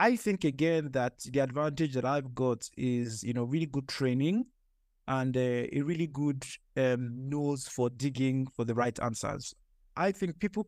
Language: English